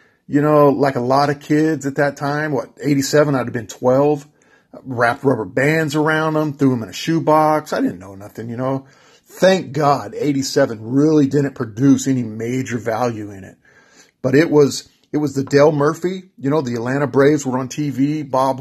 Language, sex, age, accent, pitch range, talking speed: English, male, 40-59, American, 130-155 Hz, 195 wpm